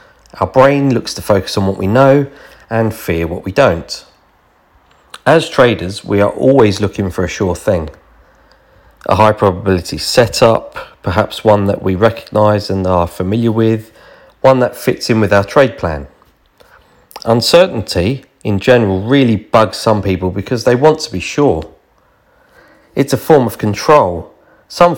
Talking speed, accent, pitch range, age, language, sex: 155 wpm, British, 95-135 Hz, 40-59, English, male